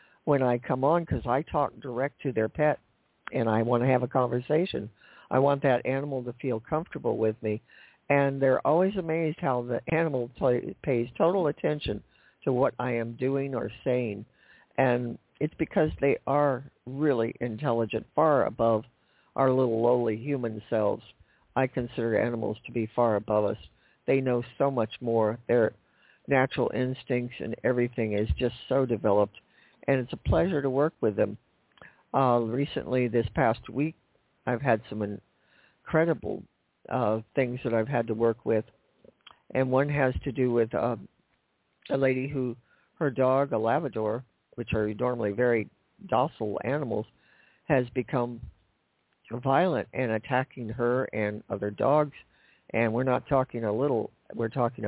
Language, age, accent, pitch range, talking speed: English, 60-79, American, 115-135 Hz, 155 wpm